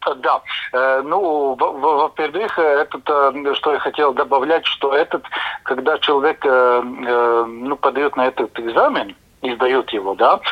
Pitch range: 125-155 Hz